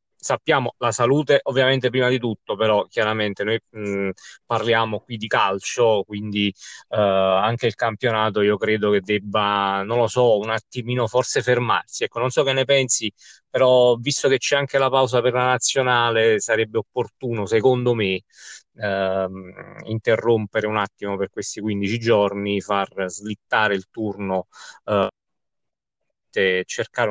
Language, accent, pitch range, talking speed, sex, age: Italian, native, 100-125 Hz, 135 wpm, male, 30-49